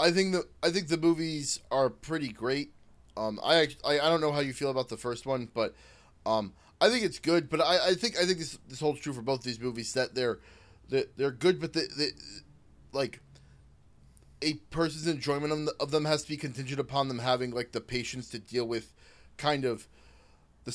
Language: English